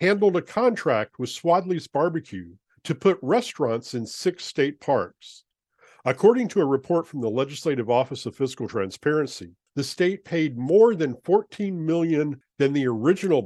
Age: 50-69